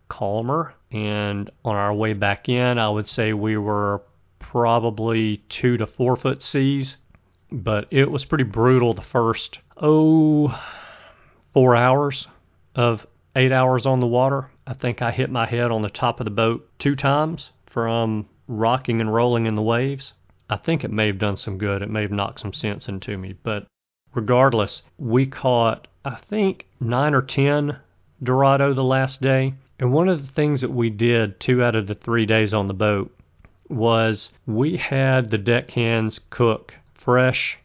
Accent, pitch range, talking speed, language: American, 105-130 Hz, 170 wpm, English